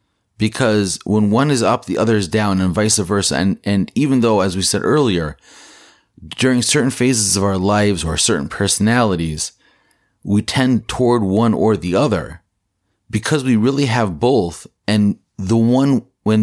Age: 30-49